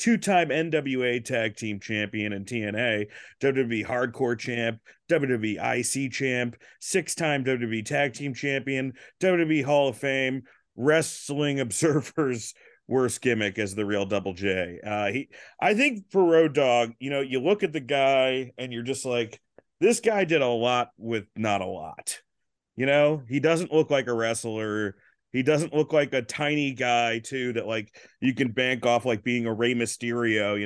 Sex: male